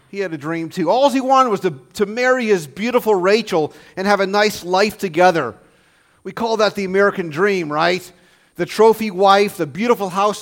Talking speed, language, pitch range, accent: 195 wpm, English, 150-215 Hz, American